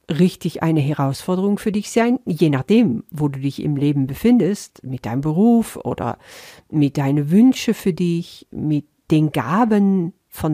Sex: female